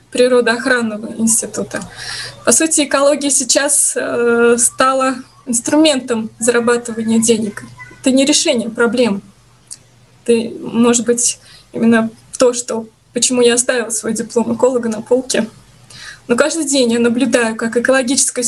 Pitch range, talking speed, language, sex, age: 230-280 Hz, 115 wpm, Russian, female, 20-39